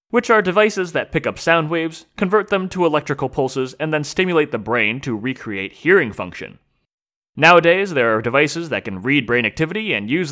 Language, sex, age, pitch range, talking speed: English, male, 30-49, 120-190 Hz, 190 wpm